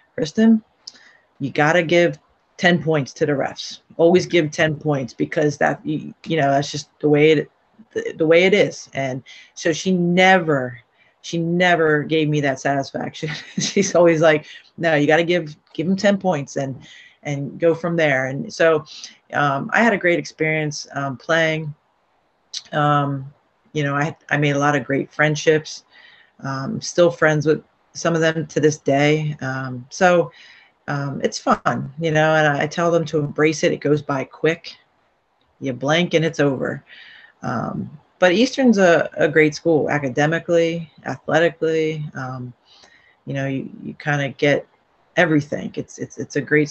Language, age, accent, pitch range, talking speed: English, 30-49, American, 140-170 Hz, 170 wpm